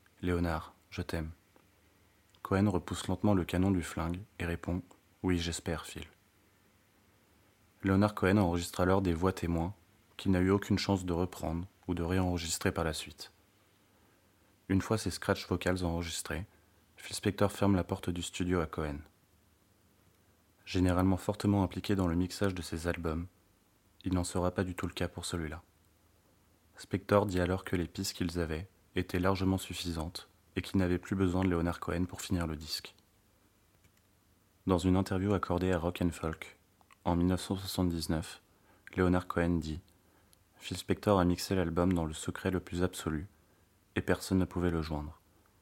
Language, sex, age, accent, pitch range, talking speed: French, male, 30-49, French, 85-95 Hz, 160 wpm